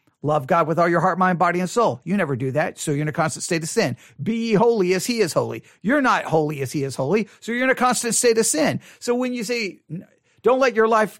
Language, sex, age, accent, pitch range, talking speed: English, male, 40-59, American, 185-275 Hz, 275 wpm